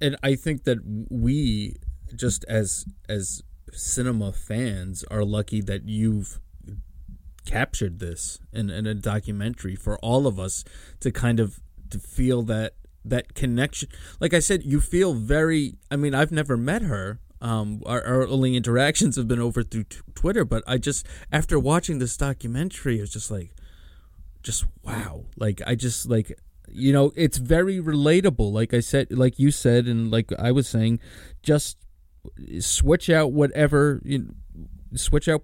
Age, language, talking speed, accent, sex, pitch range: 20-39, English, 155 wpm, American, male, 105-135 Hz